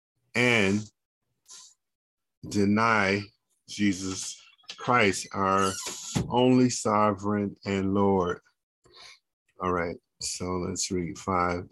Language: English